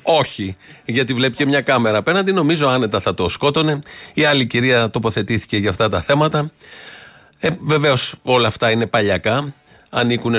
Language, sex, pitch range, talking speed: Greek, male, 105-140 Hz, 155 wpm